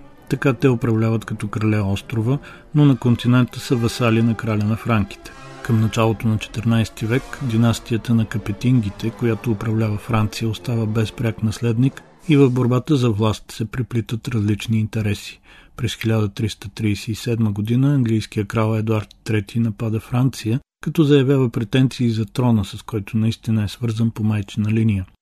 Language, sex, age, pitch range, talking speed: Bulgarian, male, 40-59, 110-125 Hz, 145 wpm